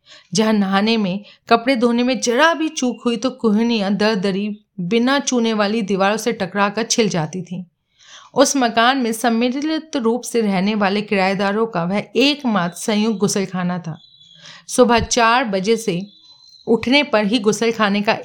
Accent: native